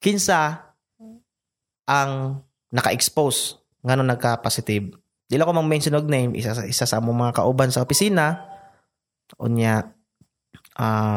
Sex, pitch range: male, 125-170 Hz